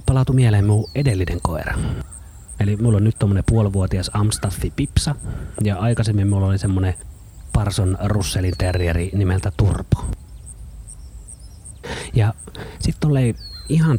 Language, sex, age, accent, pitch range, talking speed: Finnish, male, 30-49, native, 90-115 Hz, 115 wpm